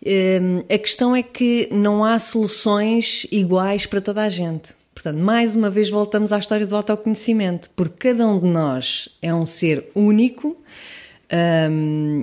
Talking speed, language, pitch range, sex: 155 wpm, English, 165-205 Hz, female